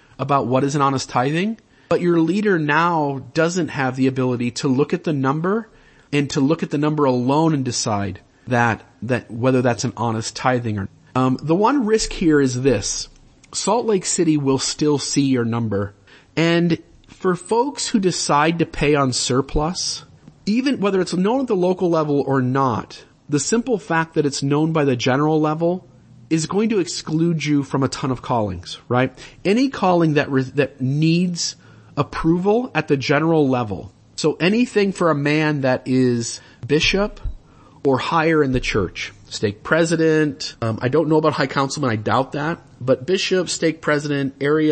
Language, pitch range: English, 130-165 Hz